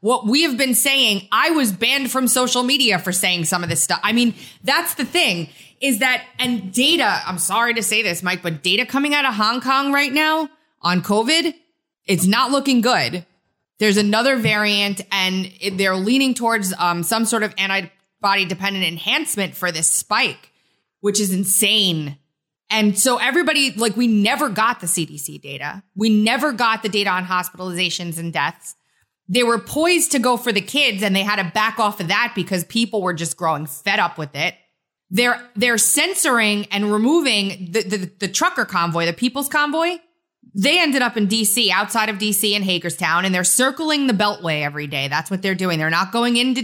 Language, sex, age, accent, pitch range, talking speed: English, female, 20-39, American, 185-245 Hz, 190 wpm